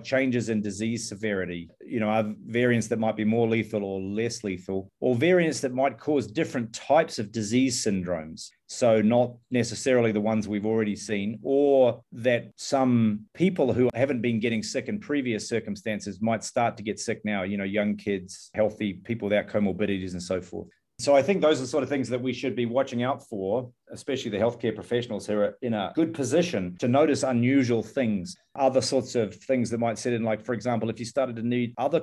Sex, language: male, English